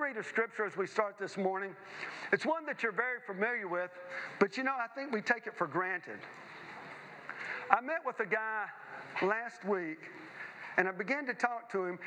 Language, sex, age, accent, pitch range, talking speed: English, male, 40-59, American, 200-245 Hz, 195 wpm